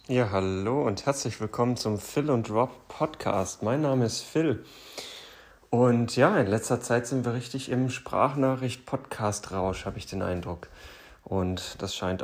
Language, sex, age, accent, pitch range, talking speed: German, male, 30-49, German, 95-115 Hz, 150 wpm